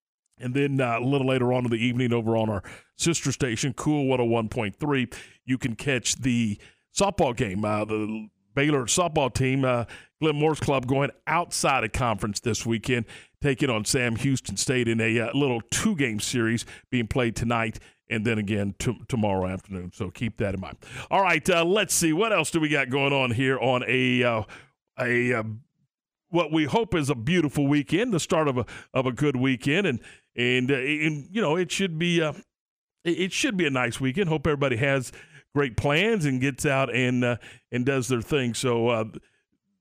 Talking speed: 195 wpm